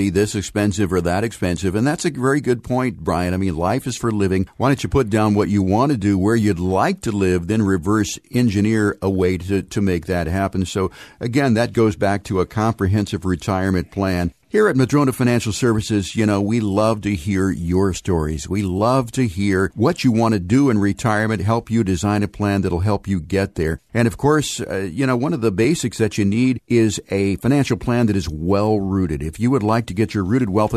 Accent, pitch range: American, 95-115 Hz